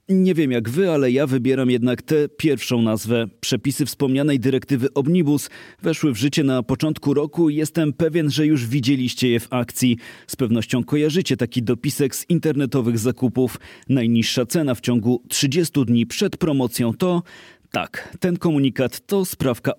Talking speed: 160 wpm